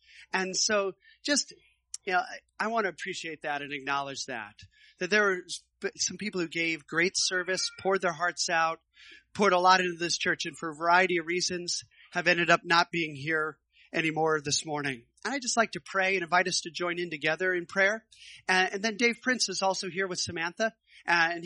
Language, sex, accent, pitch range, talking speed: English, male, American, 170-210 Hz, 200 wpm